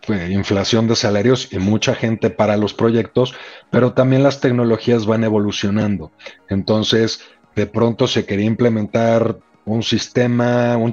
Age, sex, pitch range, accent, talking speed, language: 40-59, male, 100-115 Hz, Mexican, 130 wpm, Spanish